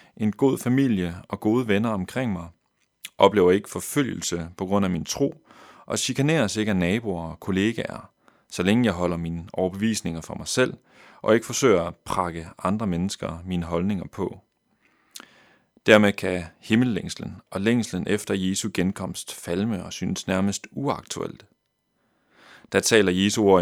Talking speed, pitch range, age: 150 wpm, 90-115 Hz, 30-49